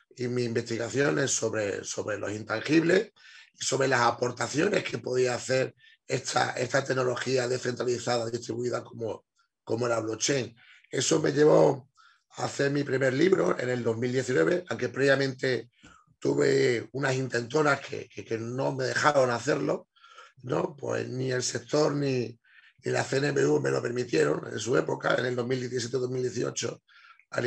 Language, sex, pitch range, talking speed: Spanish, male, 120-135 Hz, 140 wpm